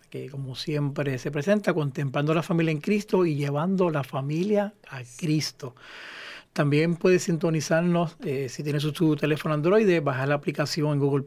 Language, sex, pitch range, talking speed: Spanish, male, 150-180 Hz, 160 wpm